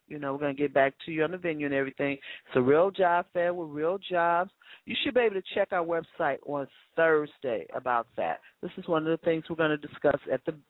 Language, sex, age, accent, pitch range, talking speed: English, female, 40-59, American, 140-165 Hz, 260 wpm